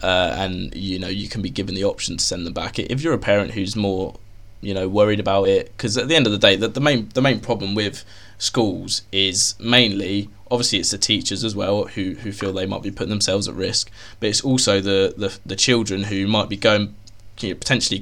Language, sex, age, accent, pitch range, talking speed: English, male, 20-39, British, 95-110 Hz, 240 wpm